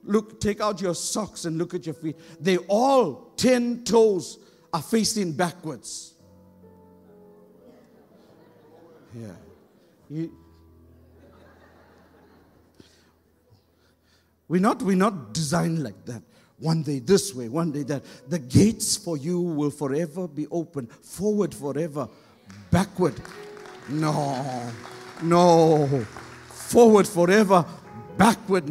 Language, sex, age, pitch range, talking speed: English, male, 60-79, 135-195 Hz, 100 wpm